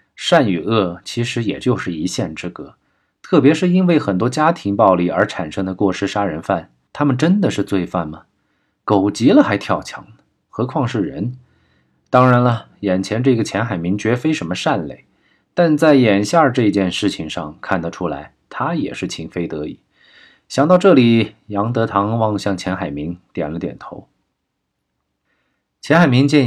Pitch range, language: 95-130 Hz, Chinese